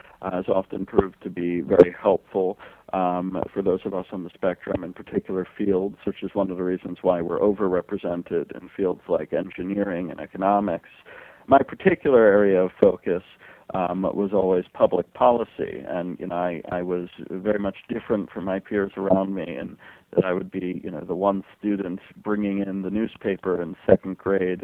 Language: English